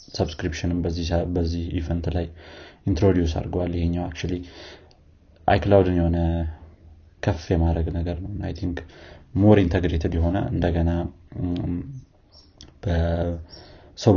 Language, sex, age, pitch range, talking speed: Amharic, male, 30-49, 85-90 Hz, 95 wpm